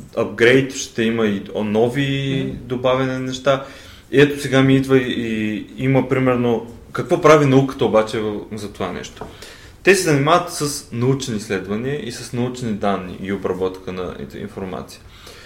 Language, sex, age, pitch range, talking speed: Bulgarian, male, 20-39, 105-125 Hz, 145 wpm